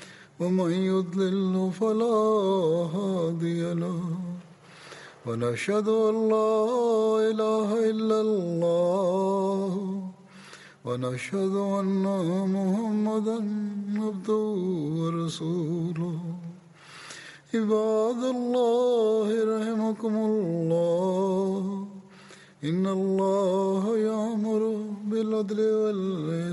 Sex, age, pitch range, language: male, 60-79, 170-215 Hz, Tamil